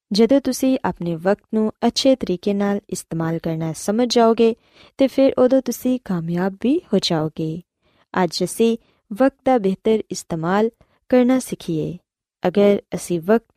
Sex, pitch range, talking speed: female, 175-235 Hz, 130 wpm